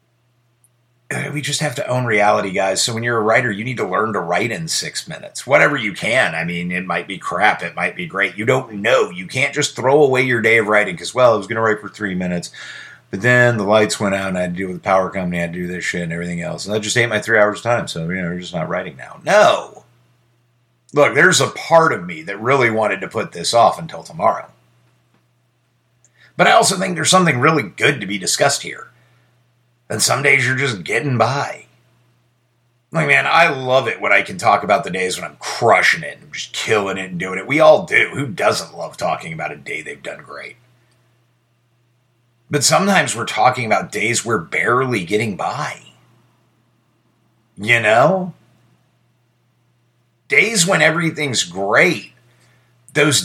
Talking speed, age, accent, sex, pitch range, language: 210 wpm, 50-69, American, male, 105-125 Hz, English